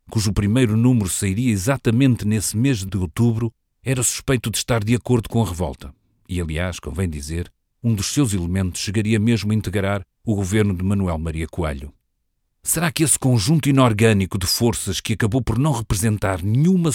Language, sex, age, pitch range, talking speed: Portuguese, male, 40-59, 90-115 Hz, 175 wpm